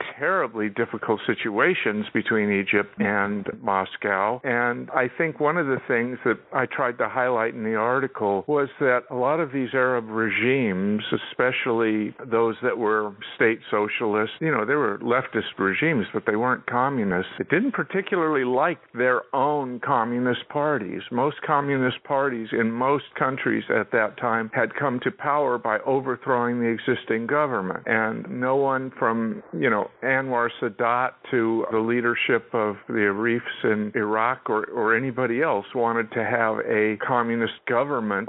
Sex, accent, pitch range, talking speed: male, American, 115-140 Hz, 155 wpm